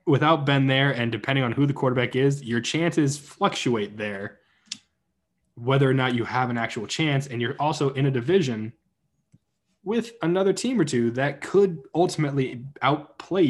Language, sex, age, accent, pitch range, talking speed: English, male, 20-39, American, 115-150 Hz, 165 wpm